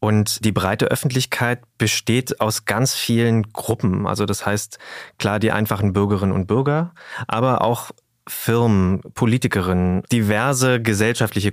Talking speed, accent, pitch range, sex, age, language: 125 wpm, German, 105-125 Hz, male, 20-39, German